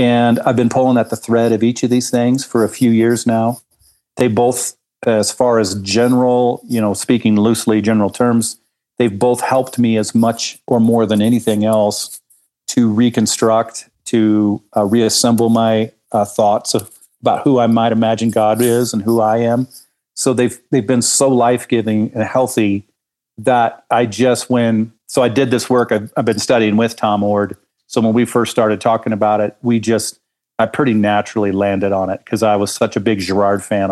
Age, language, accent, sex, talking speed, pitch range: 40-59, English, American, male, 190 wpm, 110-125 Hz